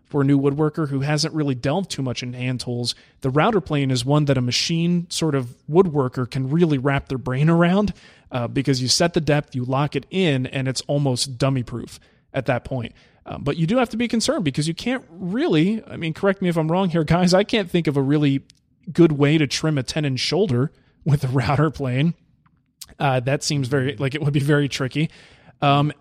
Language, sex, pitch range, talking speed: English, male, 130-165 Hz, 225 wpm